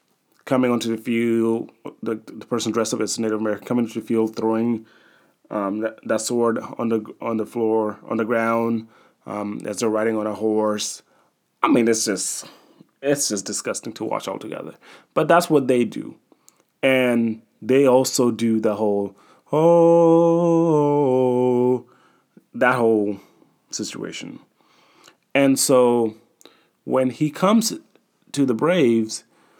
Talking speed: 140 wpm